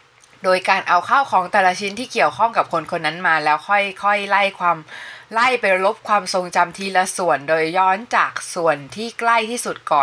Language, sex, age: Thai, female, 20-39